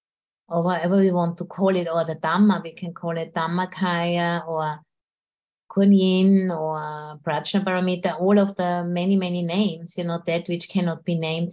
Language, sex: English, female